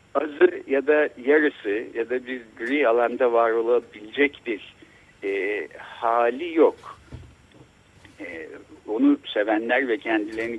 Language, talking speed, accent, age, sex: Turkish, 100 wpm, native, 60-79, male